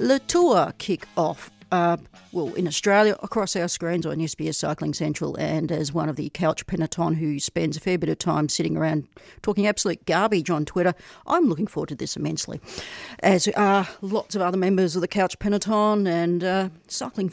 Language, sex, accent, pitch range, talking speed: English, female, Australian, 160-190 Hz, 190 wpm